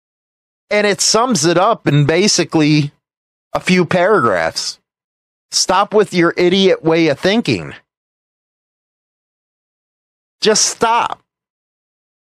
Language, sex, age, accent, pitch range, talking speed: English, male, 30-49, American, 150-200 Hz, 95 wpm